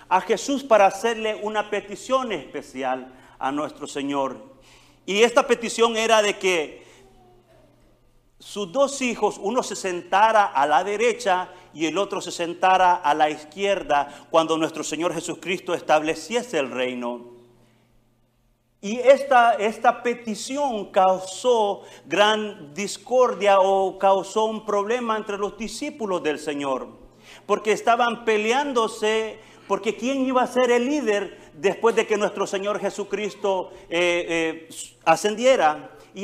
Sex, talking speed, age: male, 125 wpm, 40-59